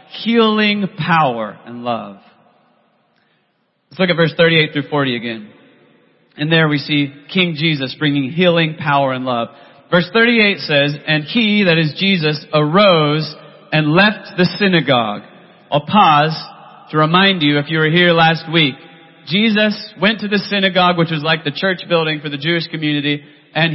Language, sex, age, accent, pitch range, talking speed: English, male, 30-49, American, 155-195 Hz, 160 wpm